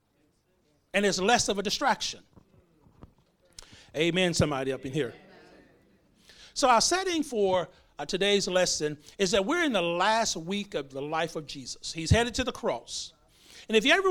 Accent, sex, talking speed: American, male, 165 wpm